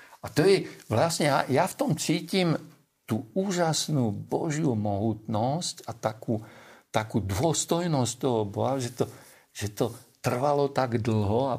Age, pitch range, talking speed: 50-69, 110-145 Hz, 140 wpm